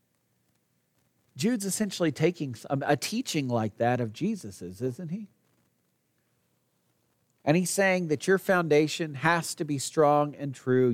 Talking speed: 125 wpm